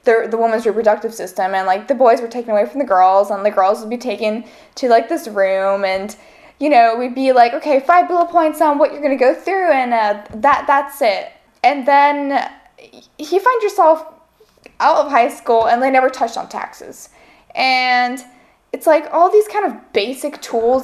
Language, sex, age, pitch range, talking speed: English, female, 10-29, 210-310 Hz, 200 wpm